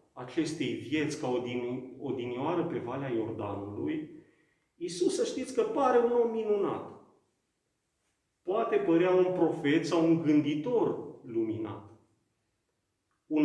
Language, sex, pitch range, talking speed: Romanian, male, 135-170 Hz, 105 wpm